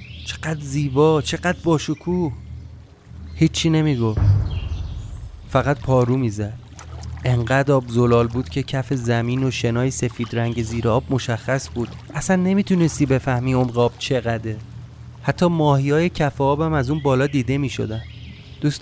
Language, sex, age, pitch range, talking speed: Persian, male, 30-49, 110-140 Hz, 135 wpm